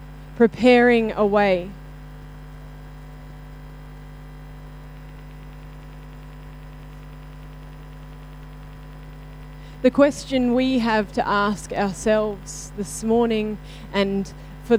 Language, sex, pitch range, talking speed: English, female, 145-230 Hz, 55 wpm